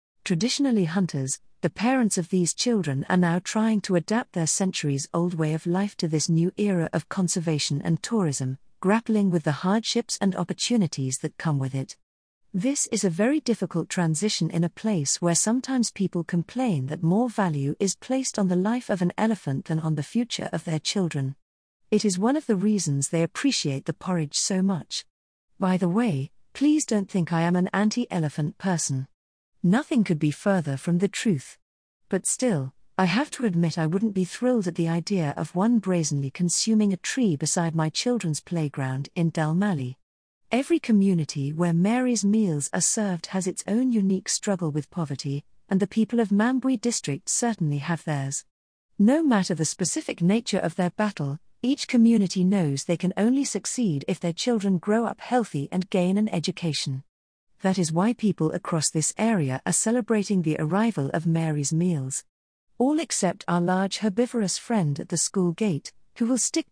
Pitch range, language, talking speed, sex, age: 160-215 Hz, English, 175 wpm, female, 50-69